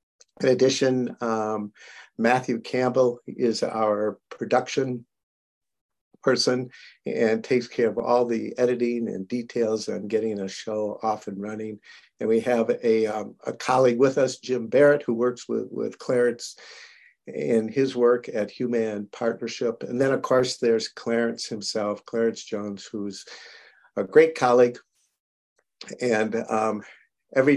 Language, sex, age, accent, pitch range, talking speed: English, male, 50-69, American, 110-125 Hz, 135 wpm